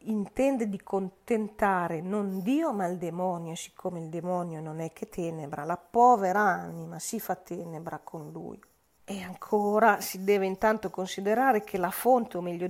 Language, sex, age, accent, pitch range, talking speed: Italian, female, 40-59, native, 170-210 Hz, 160 wpm